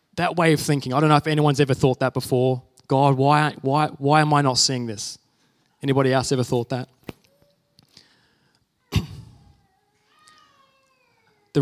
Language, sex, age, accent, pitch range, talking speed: English, male, 20-39, Australian, 135-170 Hz, 145 wpm